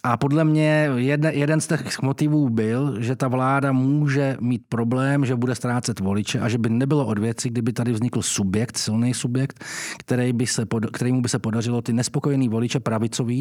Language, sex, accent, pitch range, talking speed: Czech, male, native, 120-140 Hz, 165 wpm